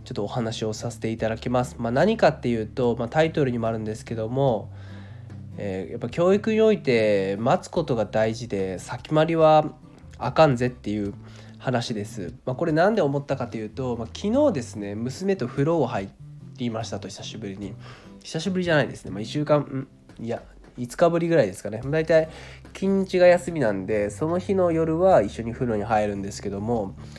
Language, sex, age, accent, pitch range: Japanese, male, 20-39, native, 105-145 Hz